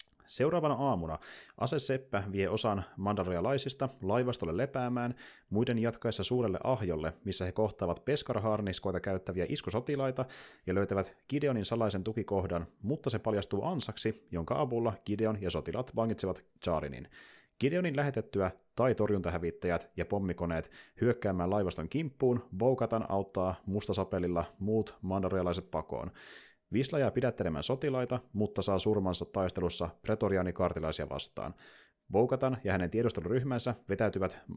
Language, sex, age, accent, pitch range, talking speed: Finnish, male, 30-49, native, 90-120 Hz, 110 wpm